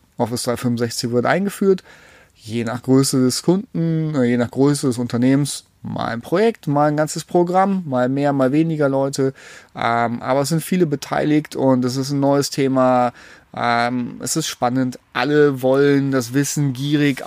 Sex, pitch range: male, 125-150 Hz